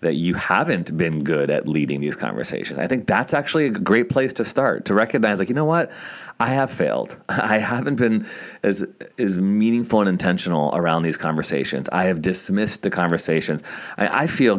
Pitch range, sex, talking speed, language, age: 85-110 Hz, male, 190 wpm, English, 30-49